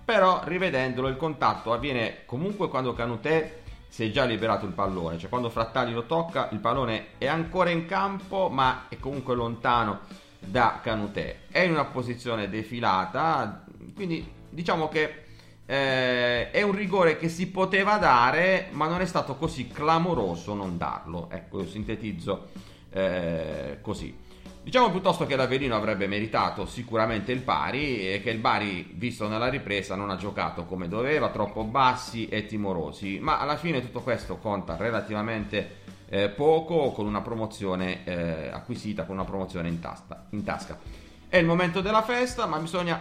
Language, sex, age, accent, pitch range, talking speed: Italian, male, 40-59, native, 100-150 Hz, 155 wpm